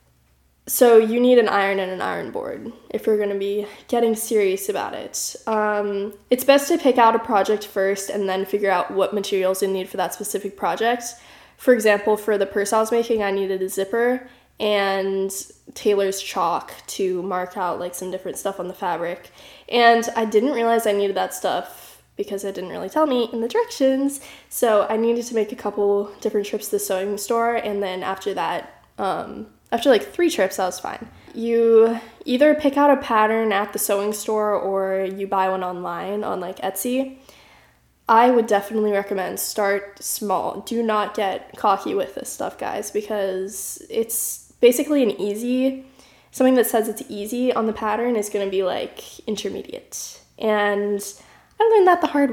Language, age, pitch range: English, 10-29, 195-240 Hz